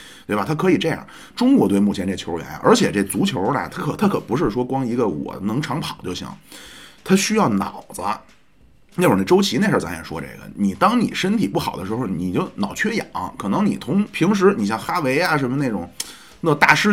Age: 30-49